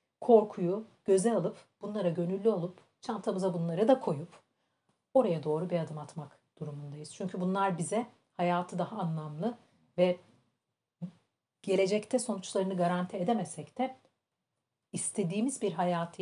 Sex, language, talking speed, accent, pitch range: female, Turkish, 115 wpm, native, 165-215 Hz